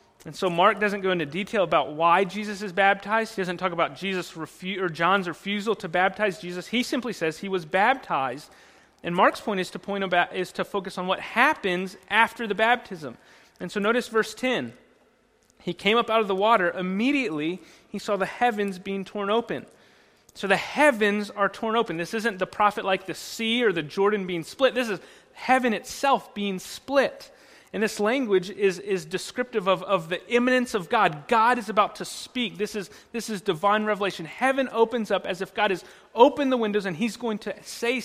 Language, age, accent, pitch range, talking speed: English, 30-49, American, 190-230 Hz, 200 wpm